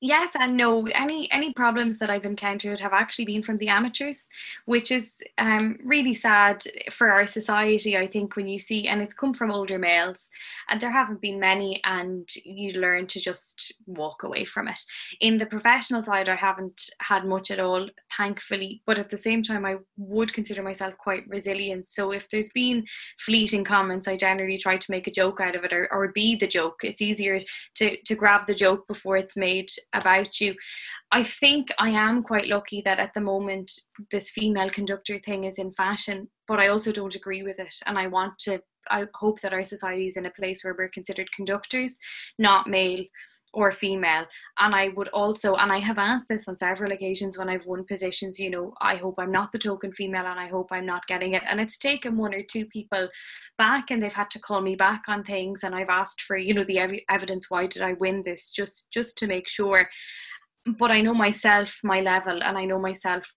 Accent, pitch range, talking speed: Irish, 190-215 Hz, 215 wpm